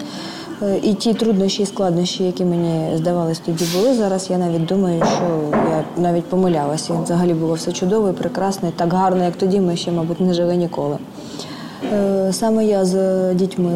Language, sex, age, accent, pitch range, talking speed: Ukrainian, female, 20-39, native, 170-195 Hz, 160 wpm